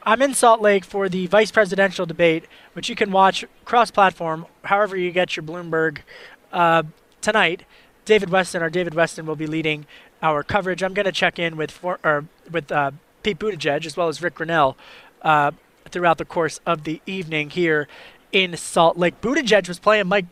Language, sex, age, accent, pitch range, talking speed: English, male, 20-39, American, 165-205 Hz, 185 wpm